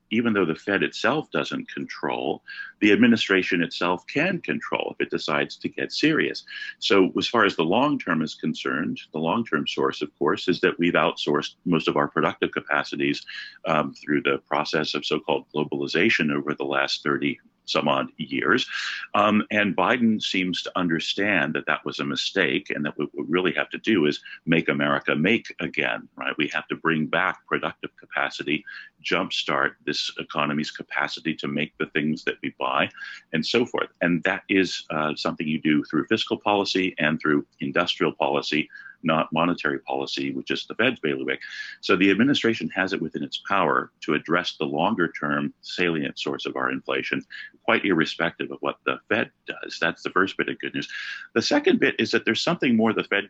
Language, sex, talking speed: English, male, 190 wpm